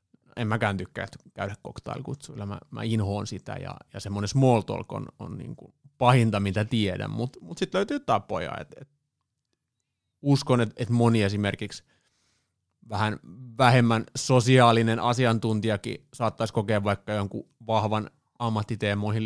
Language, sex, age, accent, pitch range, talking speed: Finnish, male, 30-49, native, 105-130 Hz, 130 wpm